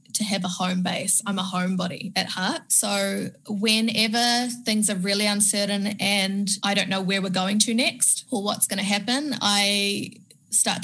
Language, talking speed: English, 175 wpm